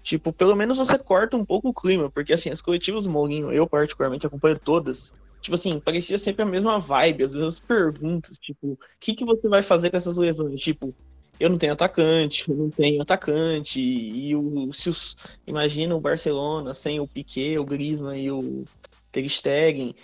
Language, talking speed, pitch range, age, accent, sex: Portuguese, 185 wpm, 130-165 Hz, 20-39, Brazilian, male